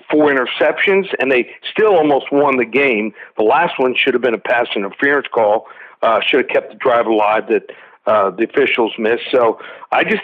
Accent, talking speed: American, 200 wpm